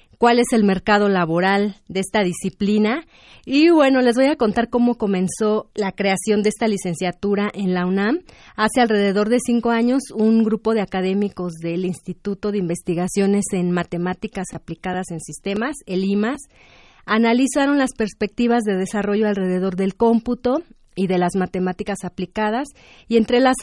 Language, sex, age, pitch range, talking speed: Spanish, female, 30-49, 190-230 Hz, 150 wpm